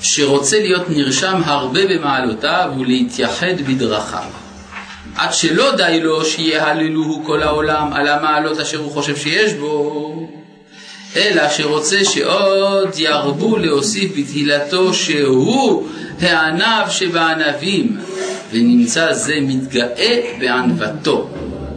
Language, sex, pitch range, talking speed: Hebrew, male, 130-185 Hz, 95 wpm